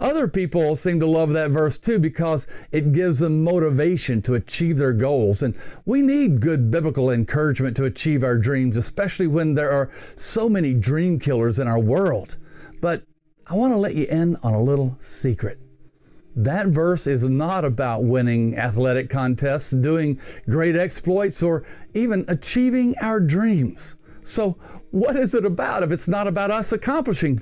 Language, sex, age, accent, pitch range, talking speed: English, male, 50-69, American, 130-180 Hz, 165 wpm